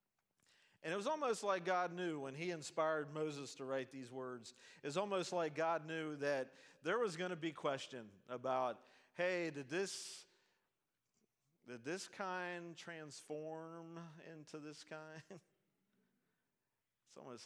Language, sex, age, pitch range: English, male, 50-69, 125-165 Hz